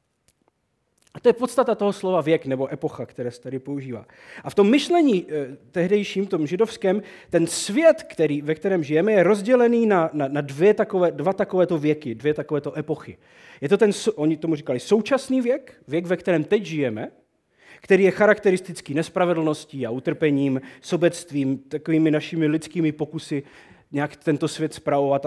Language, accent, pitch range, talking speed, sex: Czech, native, 145-200 Hz, 150 wpm, male